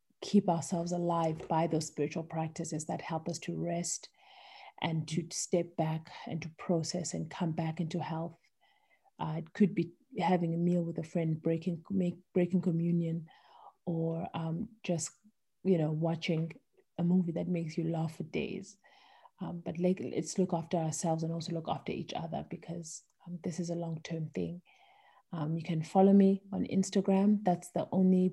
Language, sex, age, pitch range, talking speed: English, female, 30-49, 165-185 Hz, 175 wpm